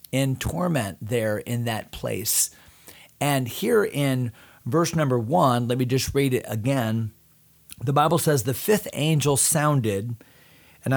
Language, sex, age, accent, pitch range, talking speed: English, male, 40-59, American, 115-140 Hz, 140 wpm